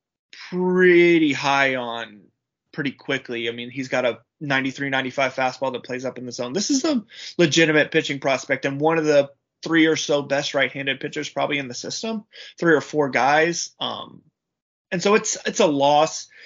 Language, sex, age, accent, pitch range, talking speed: English, male, 20-39, American, 125-155 Hz, 180 wpm